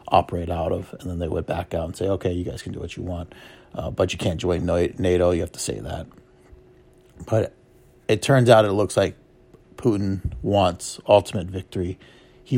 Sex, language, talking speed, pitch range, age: male, English, 200 wpm, 90-100 Hz, 30-49